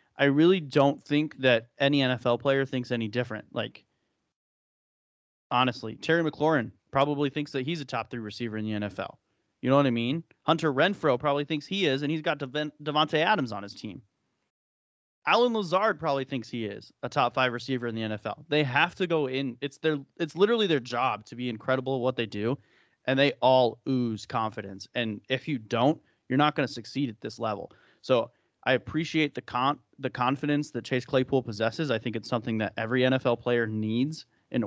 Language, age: English, 30-49